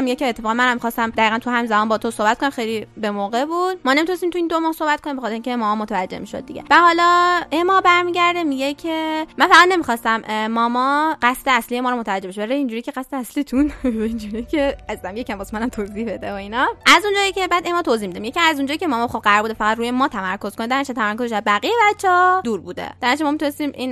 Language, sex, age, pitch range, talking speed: Persian, female, 10-29, 225-310 Hz, 210 wpm